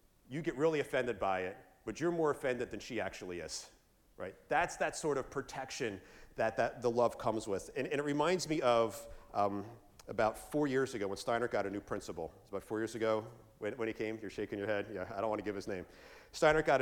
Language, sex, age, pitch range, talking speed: English, male, 40-59, 100-140 Hz, 240 wpm